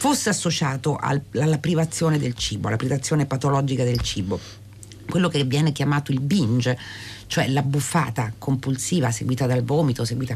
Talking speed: 145 wpm